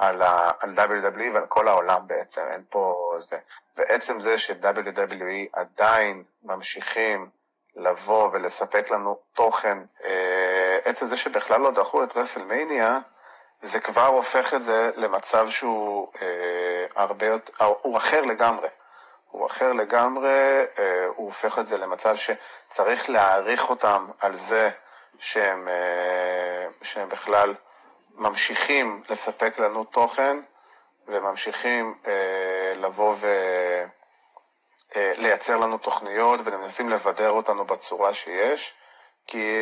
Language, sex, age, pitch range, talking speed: Hebrew, male, 30-49, 95-135 Hz, 105 wpm